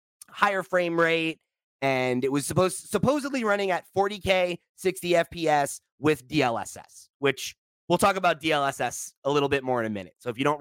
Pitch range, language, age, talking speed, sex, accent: 120-155 Hz, English, 30-49, 175 wpm, male, American